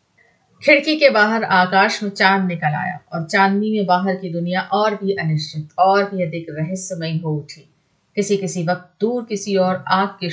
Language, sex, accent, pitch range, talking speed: Hindi, female, native, 170-220 Hz, 180 wpm